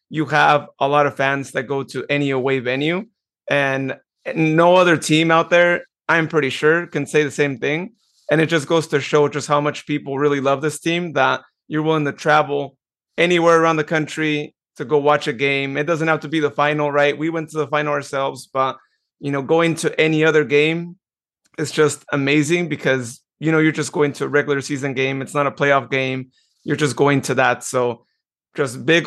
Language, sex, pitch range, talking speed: English, male, 135-155 Hz, 215 wpm